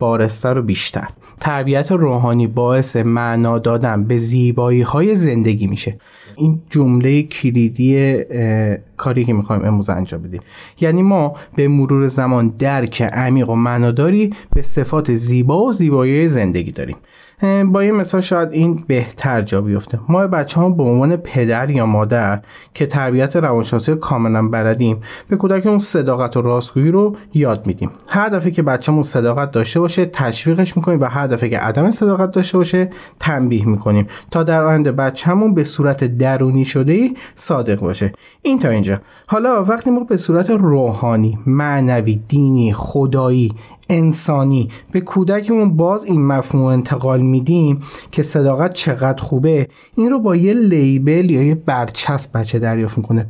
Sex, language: male, Persian